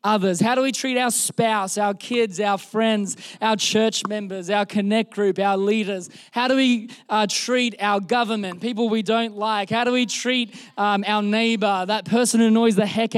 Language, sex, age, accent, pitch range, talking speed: English, male, 20-39, Australian, 205-245 Hz, 195 wpm